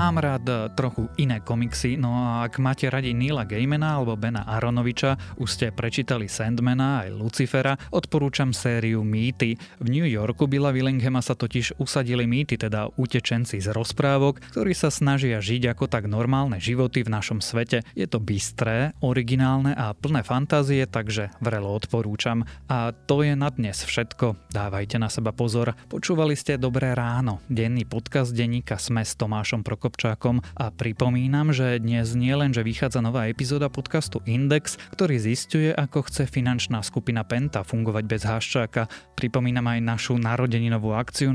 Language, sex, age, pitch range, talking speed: Slovak, male, 20-39, 115-135 Hz, 155 wpm